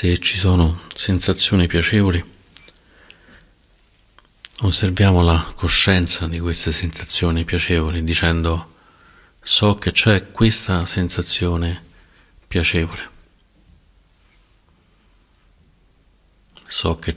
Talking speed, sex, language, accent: 75 wpm, male, Italian, native